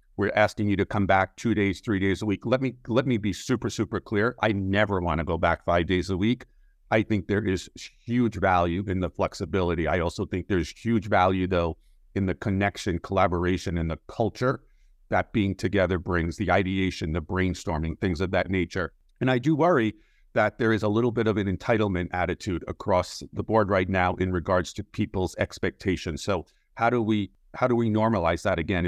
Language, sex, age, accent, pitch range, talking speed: English, male, 50-69, American, 90-110 Hz, 205 wpm